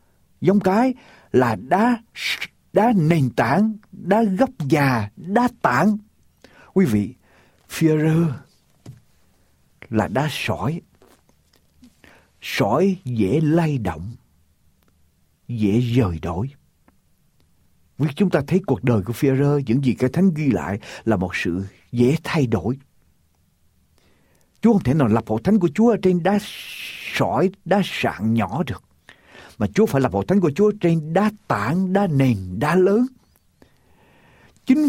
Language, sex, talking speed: Ukrainian, male, 125 wpm